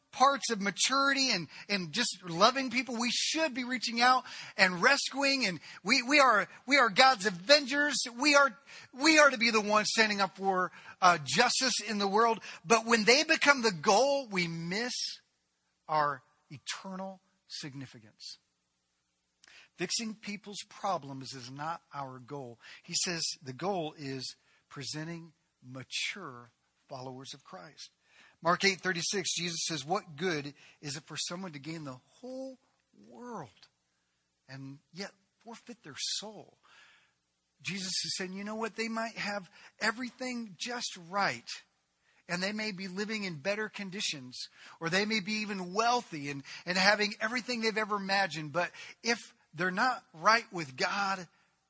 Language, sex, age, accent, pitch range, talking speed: English, male, 40-59, American, 155-230 Hz, 150 wpm